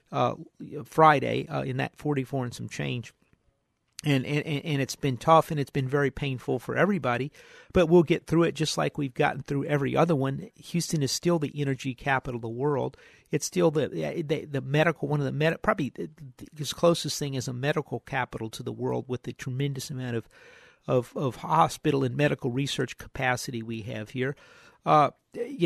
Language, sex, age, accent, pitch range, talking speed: English, male, 50-69, American, 135-170 Hz, 195 wpm